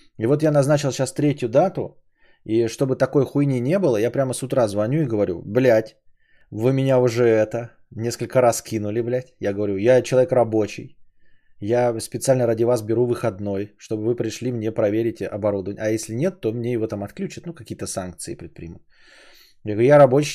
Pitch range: 105-125 Hz